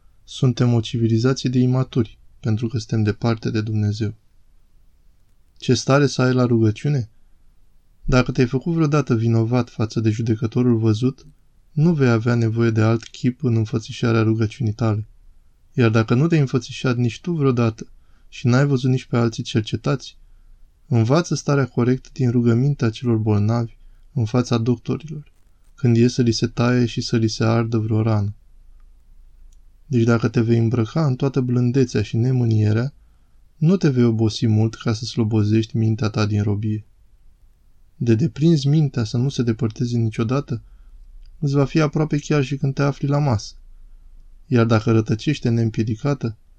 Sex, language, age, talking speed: male, Romanian, 20-39, 155 wpm